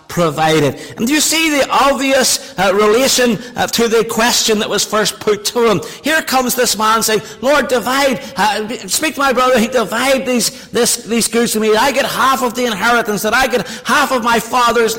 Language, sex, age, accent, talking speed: English, male, 50-69, American, 205 wpm